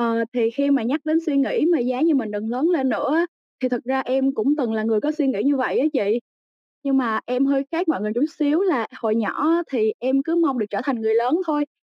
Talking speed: 265 wpm